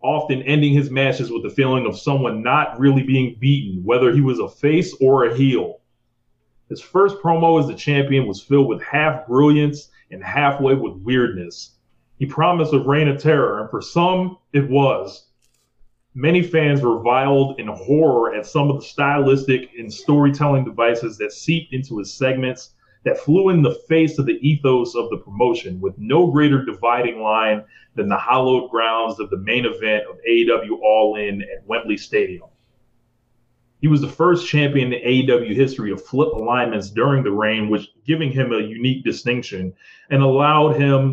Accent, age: American, 30-49